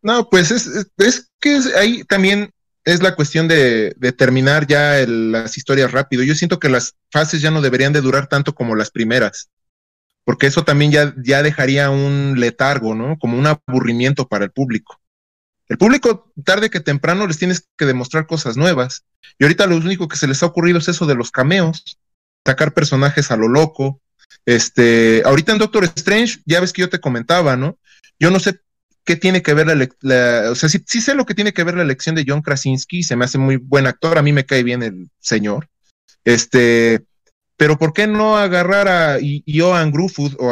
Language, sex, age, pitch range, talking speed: Spanish, male, 30-49, 125-170 Hz, 200 wpm